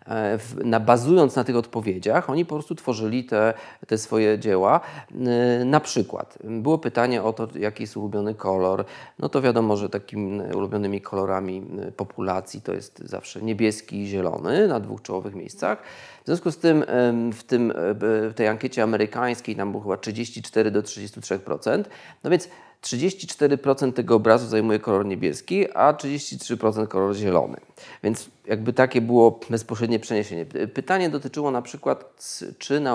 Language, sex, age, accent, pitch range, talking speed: Polish, male, 30-49, native, 105-130 Hz, 140 wpm